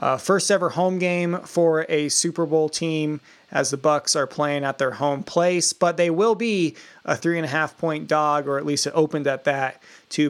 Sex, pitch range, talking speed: male, 150-175 Hz, 220 wpm